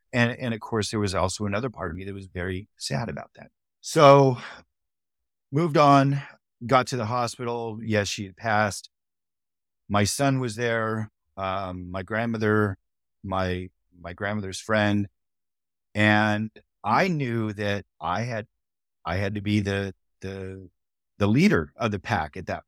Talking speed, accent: 155 wpm, American